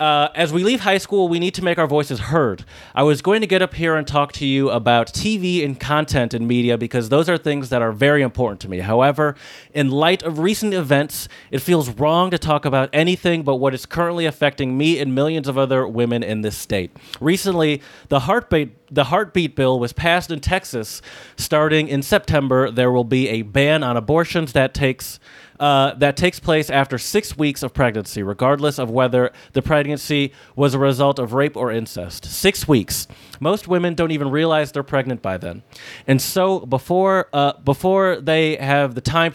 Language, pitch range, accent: English, 130-160 Hz, American